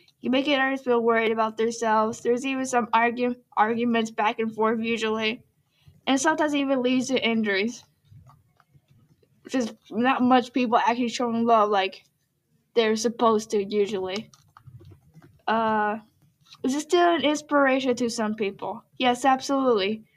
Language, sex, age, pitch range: English, female, 10-29, 215-255 Hz